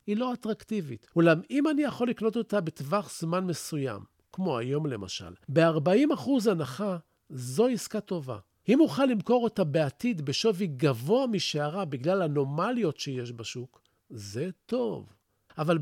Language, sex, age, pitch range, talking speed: Hebrew, male, 50-69, 135-190 Hz, 135 wpm